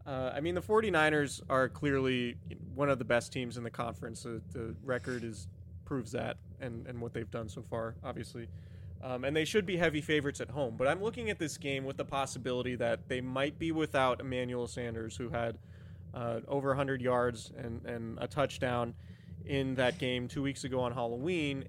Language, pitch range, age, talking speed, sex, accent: English, 115-135 Hz, 20-39, 200 wpm, male, American